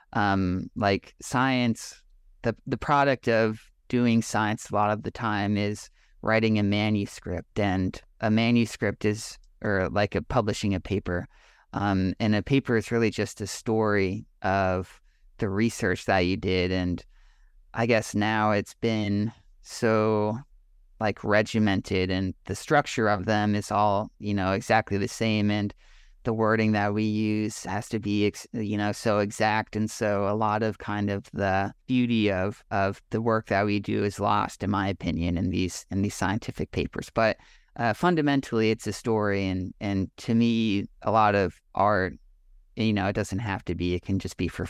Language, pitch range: English, 95-110 Hz